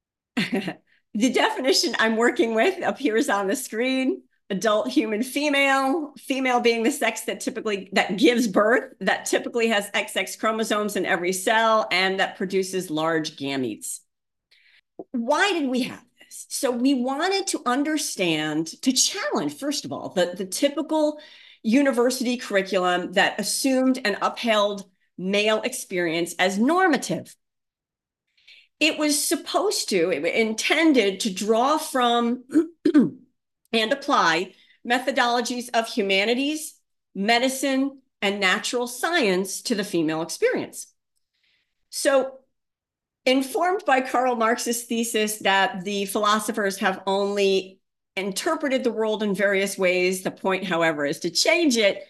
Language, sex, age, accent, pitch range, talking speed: English, female, 40-59, American, 195-270 Hz, 125 wpm